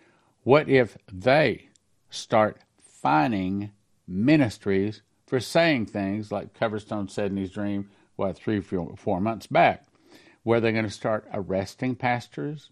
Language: English